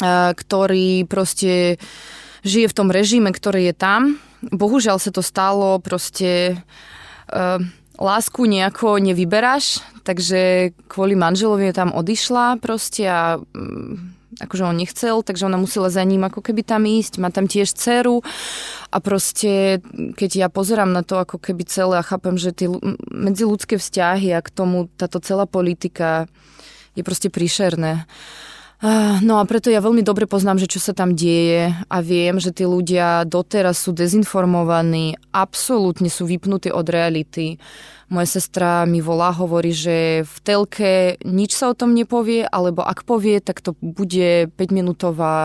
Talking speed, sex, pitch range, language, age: 145 wpm, female, 175-205 Hz, Slovak, 20-39